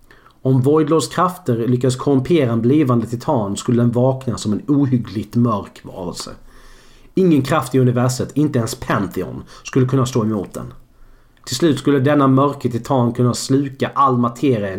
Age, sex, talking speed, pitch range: 40-59, male, 155 wpm, 120-145 Hz